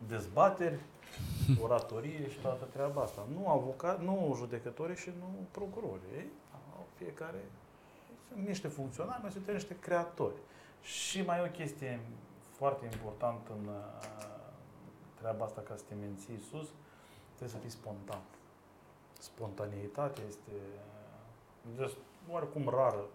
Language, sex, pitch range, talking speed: Romanian, male, 110-155 Hz, 115 wpm